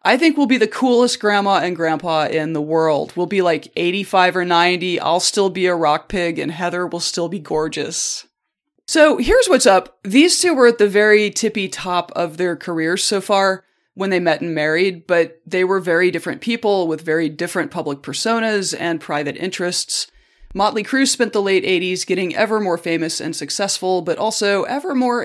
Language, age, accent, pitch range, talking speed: English, 30-49, American, 160-195 Hz, 195 wpm